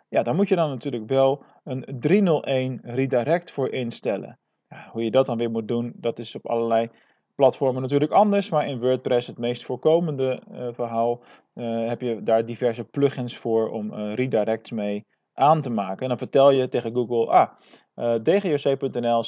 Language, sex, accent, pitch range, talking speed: Dutch, male, Dutch, 120-160 Hz, 175 wpm